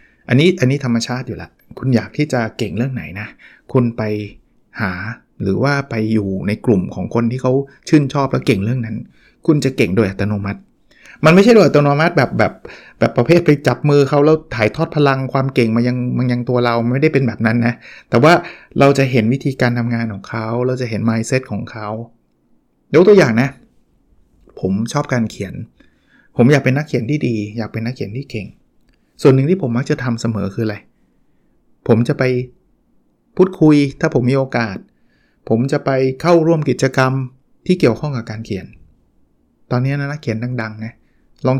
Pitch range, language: 115-145 Hz, Thai